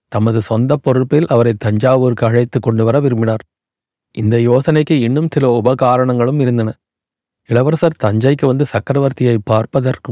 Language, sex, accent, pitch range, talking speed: Tamil, male, native, 115-140 Hz, 120 wpm